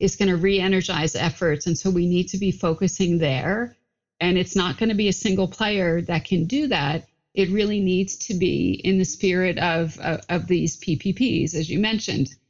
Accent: American